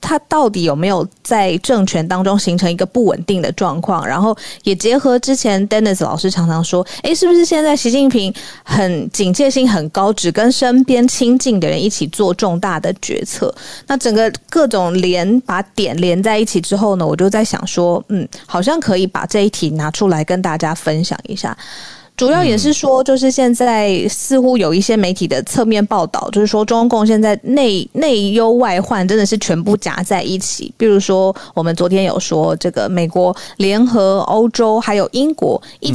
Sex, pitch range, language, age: female, 180-235 Hz, Chinese, 20-39